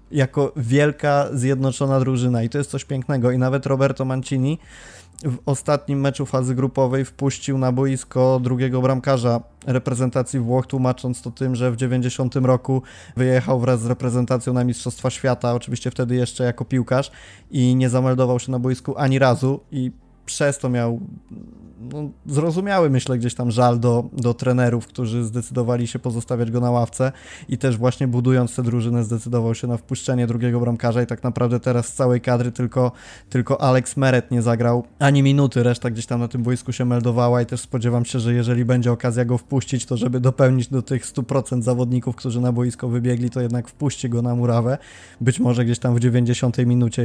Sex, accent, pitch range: male, native, 120-130 Hz